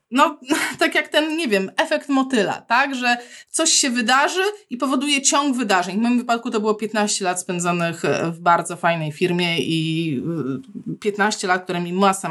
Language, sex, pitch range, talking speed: Polish, female, 185-245 Hz, 170 wpm